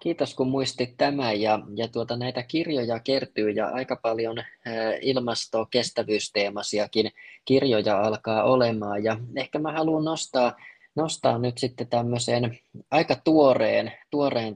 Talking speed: 125 wpm